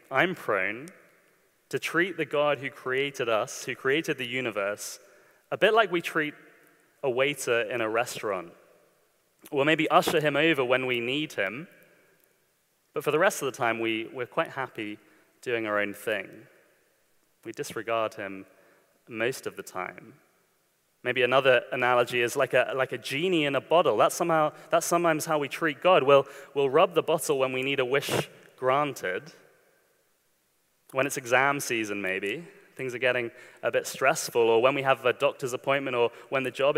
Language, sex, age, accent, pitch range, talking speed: English, male, 30-49, British, 125-170 Hz, 175 wpm